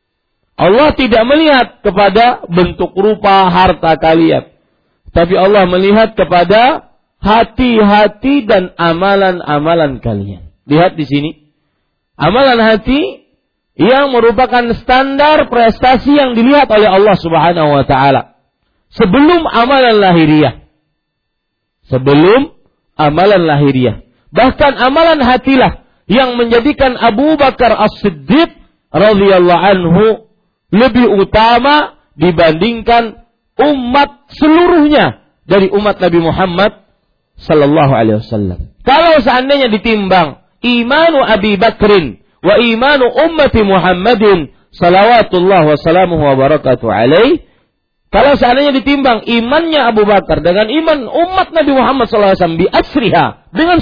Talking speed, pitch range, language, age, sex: 100 wpm, 165-255 Hz, Malay, 50-69, male